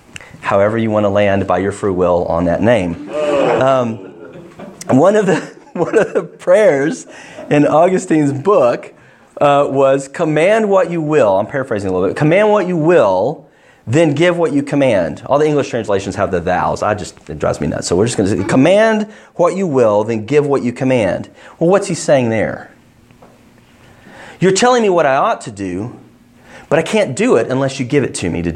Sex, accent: male, American